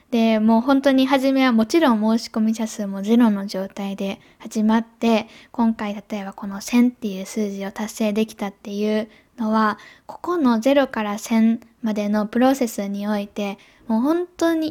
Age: 10-29